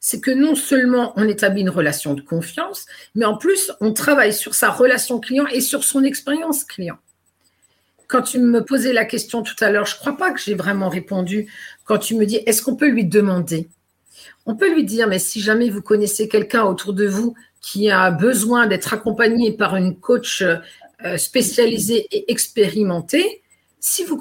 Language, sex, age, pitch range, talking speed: French, female, 50-69, 195-255 Hz, 190 wpm